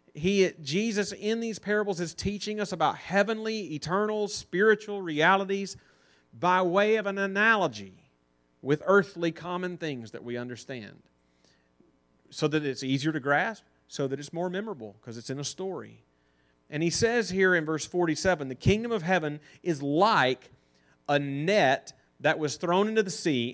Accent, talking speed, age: American, 160 wpm, 40-59